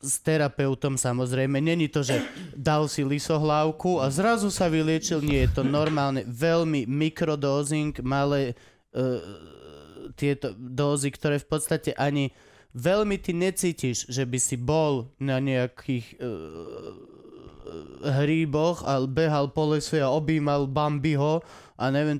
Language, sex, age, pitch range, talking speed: Slovak, male, 20-39, 125-155 Hz, 125 wpm